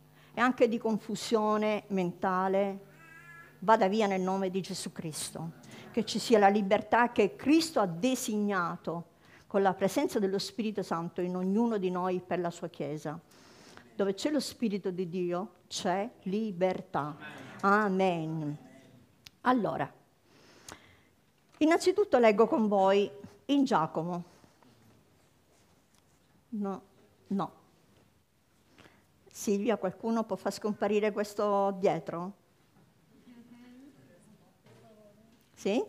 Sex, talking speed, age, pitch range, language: female, 100 wpm, 50-69, 180-225 Hz, Italian